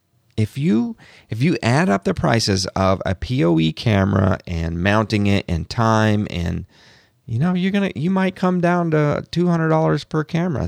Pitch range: 95-130 Hz